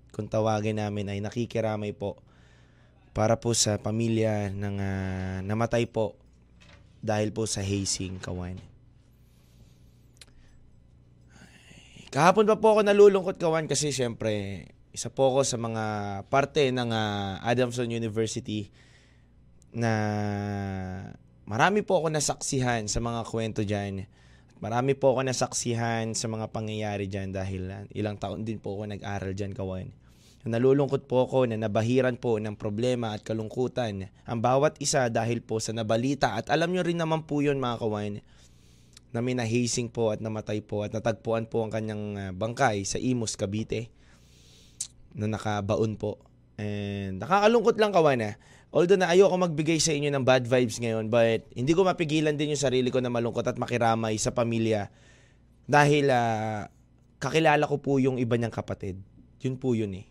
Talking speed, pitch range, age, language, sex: 150 wpm, 105-125 Hz, 20-39, Filipino, male